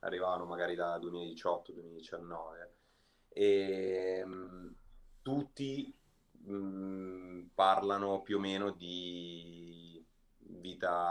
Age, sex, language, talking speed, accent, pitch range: 30-49, male, Italian, 80 wpm, native, 85-100 Hz